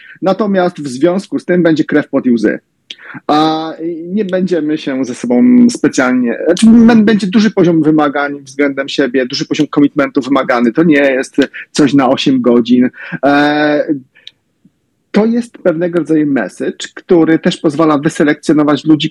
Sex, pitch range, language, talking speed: male, 140-180 Hz, Polish, 140 wpm